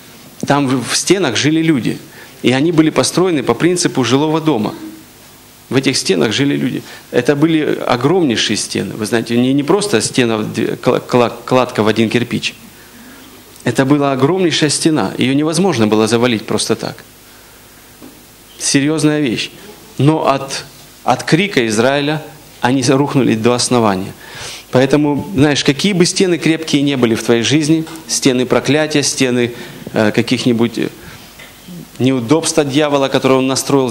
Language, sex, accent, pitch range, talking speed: Russian, male, native, 120-150 Hz, 130 wpm